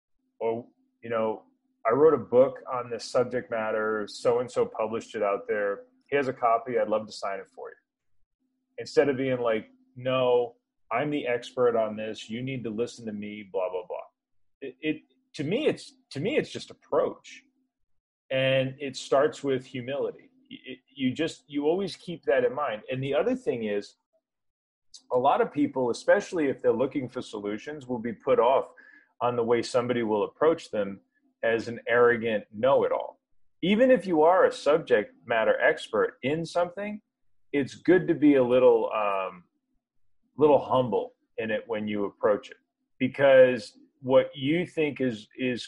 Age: 30-49